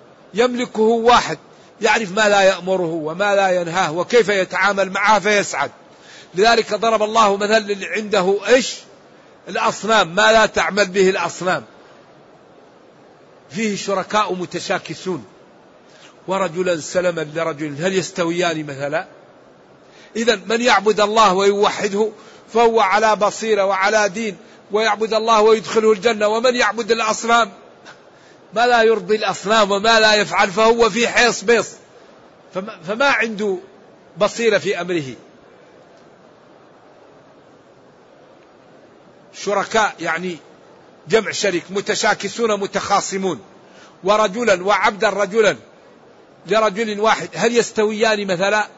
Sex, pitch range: male, 185-220 Hz